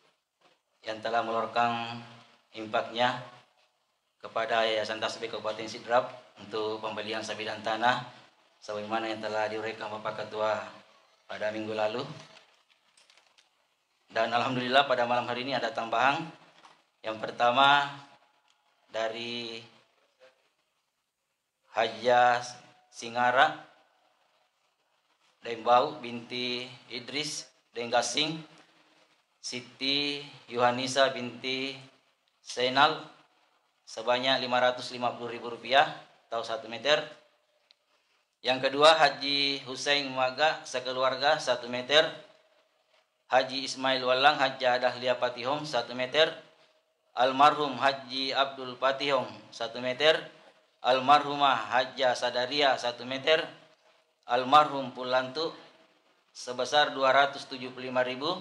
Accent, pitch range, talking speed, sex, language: native, 115-140 Hz, 85 wpm, male, Indonesian